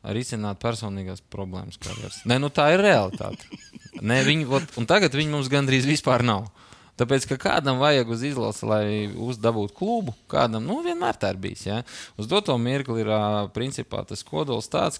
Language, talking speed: English, 170 wpm